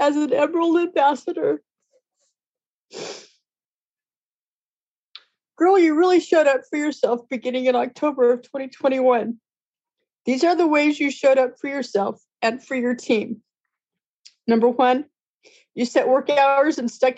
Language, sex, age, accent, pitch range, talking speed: English, female, 30-49, American, 240-300 Hz, 130 wpm